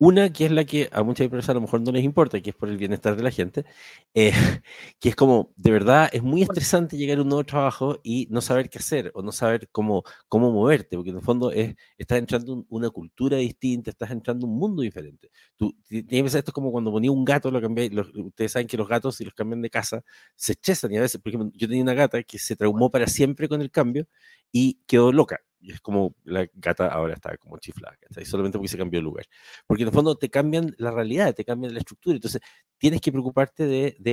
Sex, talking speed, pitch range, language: male, 250 wpm, 110-145 Hz, Spanish